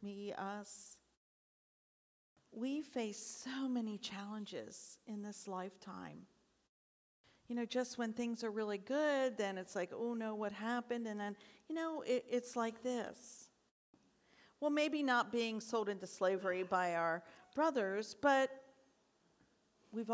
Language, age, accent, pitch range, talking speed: English, 50-69, American, 195-230 Hz, 130 wpm